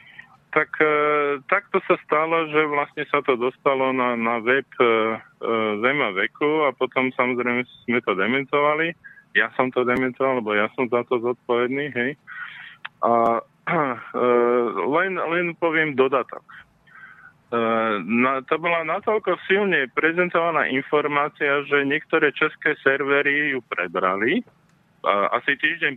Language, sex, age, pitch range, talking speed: Slovak, male, 20-39, 120-160 Hz, 130 wpm